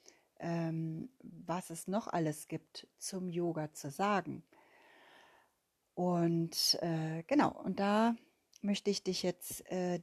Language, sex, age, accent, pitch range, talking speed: German, female, 30-49, German, 165-205 Hz, 115 wpm